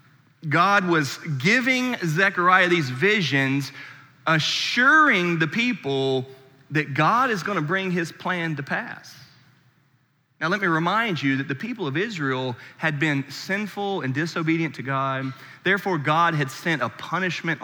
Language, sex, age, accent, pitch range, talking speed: English, male, 30-49, American, 140-185 Hz, 145 wpm